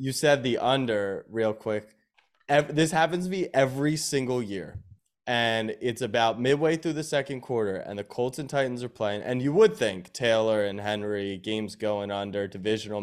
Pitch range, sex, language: 105-130 Hz, male, English